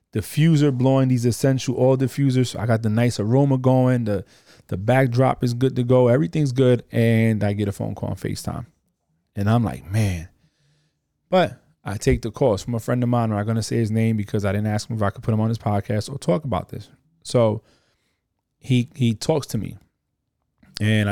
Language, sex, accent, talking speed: English, male, American, 210 wpm